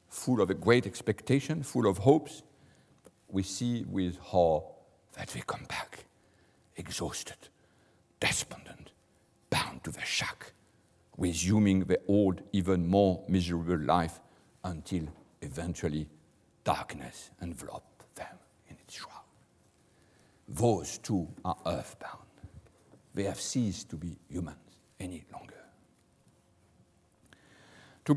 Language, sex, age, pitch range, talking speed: English, male, 60-79, 95-140 Hz, 105 wpm